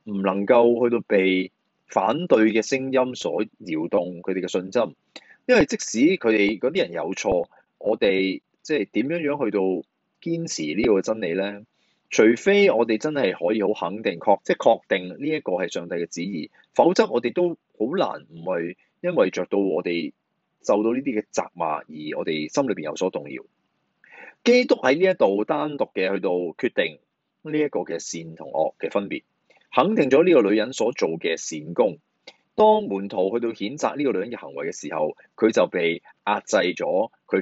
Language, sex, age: Chinese, male, 20-39